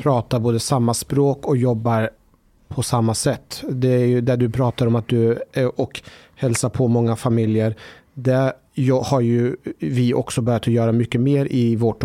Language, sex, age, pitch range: Swedish, male, 30-49, 115-140 Hz